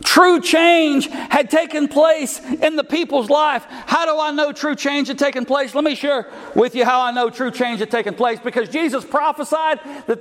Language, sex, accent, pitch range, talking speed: English, male, American, 260-320 Hz, 205 wpm